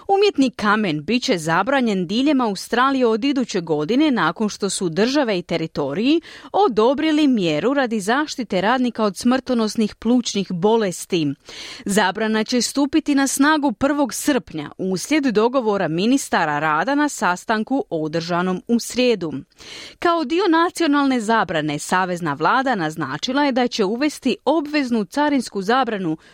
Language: Croatian